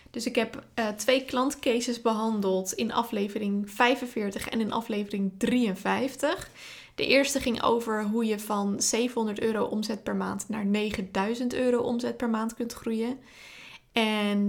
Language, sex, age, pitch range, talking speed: Dutch, female, 20-39, 210-245 Hz, 145 wpm